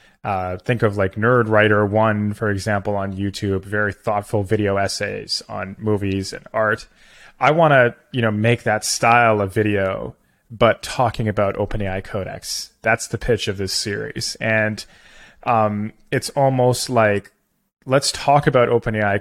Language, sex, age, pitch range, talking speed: English, male, 20-39, 100-120 Hz, 155 wpm